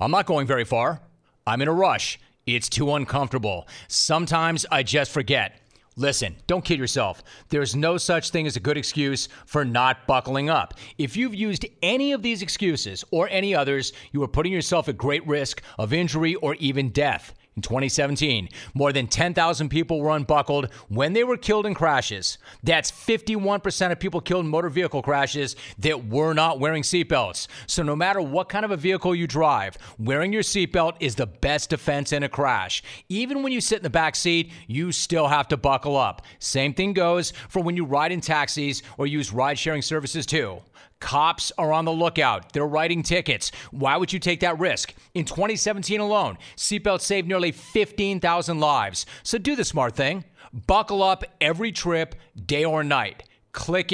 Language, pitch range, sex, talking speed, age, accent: English, 140-180 Hz, male, 185 wpm, 40-59, American